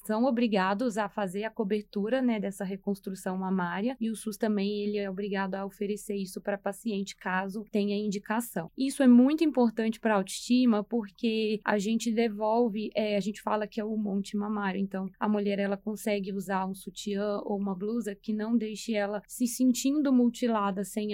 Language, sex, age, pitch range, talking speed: Portuguese, female, 20-39, 200-230 Hz, 180 wpm